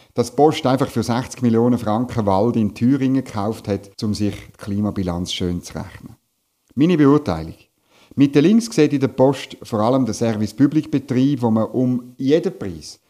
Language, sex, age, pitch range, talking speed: German, male, 50-69, 105-135 Hz, 180 wpm